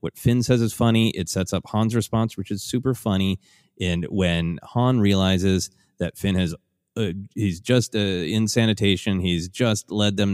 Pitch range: 95-130 Hz